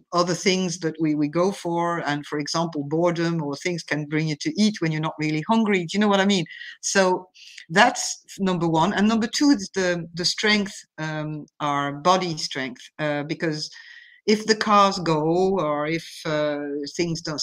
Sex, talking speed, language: female, 190 wpm, English